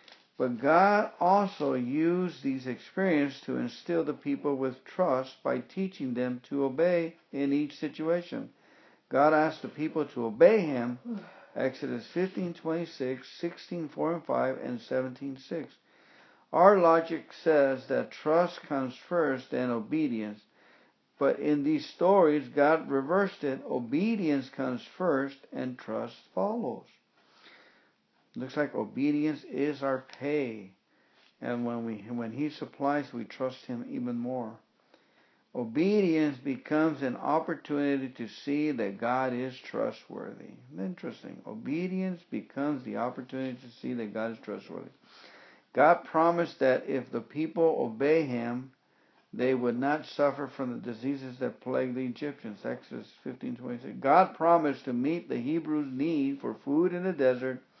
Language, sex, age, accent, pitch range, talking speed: English, male, 60-79, American, 130-170 Hz, 135 wpm